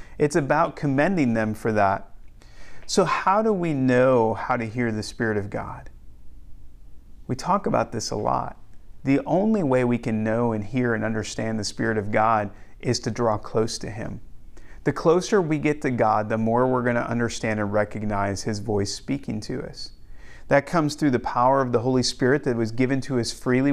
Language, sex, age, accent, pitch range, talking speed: English, male, 40-59, American, 110-155 Hz, 195 wpm